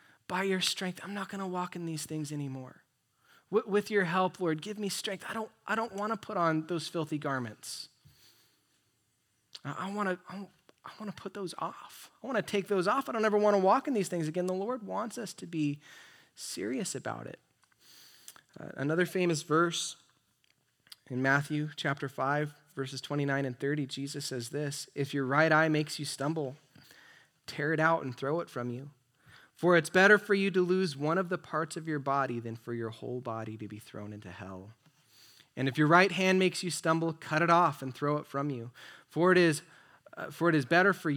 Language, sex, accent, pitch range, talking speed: English, male, American, 140-185 Hz, 205 wpm